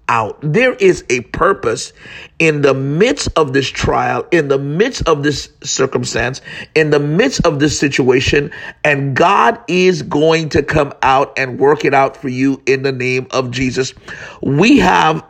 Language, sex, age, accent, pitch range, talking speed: English, male, 50-69, American, 135-165 Hz, 170 wpm